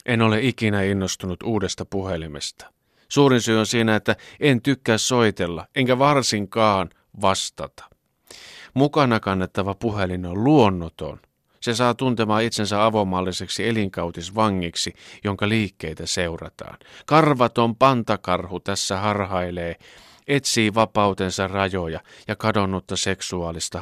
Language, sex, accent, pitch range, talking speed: Finnish, male, native, 95-135 Hz, 105 wpm